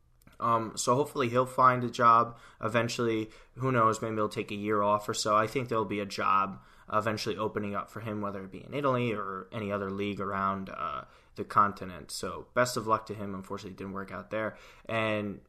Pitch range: 100-120 Hz